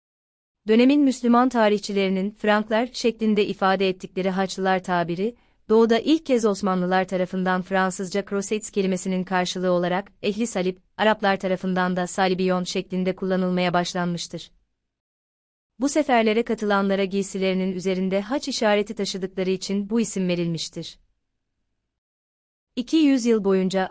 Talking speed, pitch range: 110 wpm, 180-210 Hz